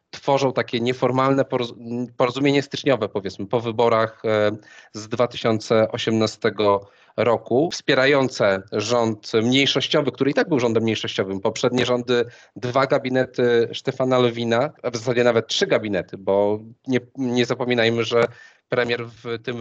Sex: male